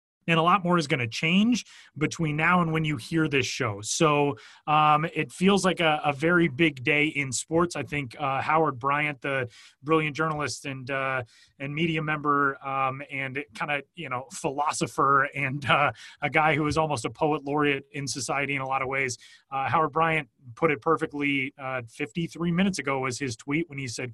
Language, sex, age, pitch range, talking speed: English, male, 30-49, 140-170 Hz, 200 wpm